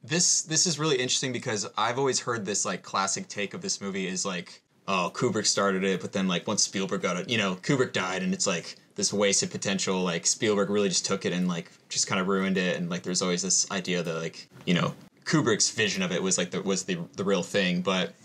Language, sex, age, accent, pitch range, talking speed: English, male, 20-39, American, 95-135 Hz, 245 wpm